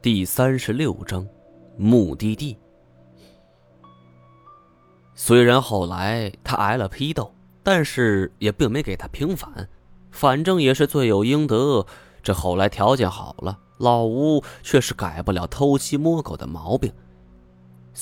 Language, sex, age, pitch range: Chinese, male, 20-39, 90-130 Hz